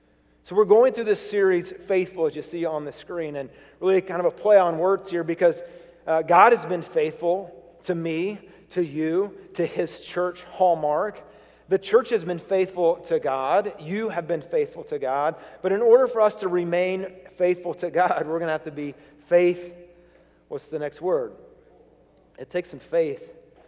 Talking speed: 190 wpm